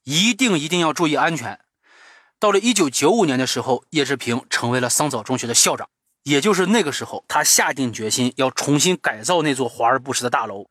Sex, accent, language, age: male, native, Chinese, 30-49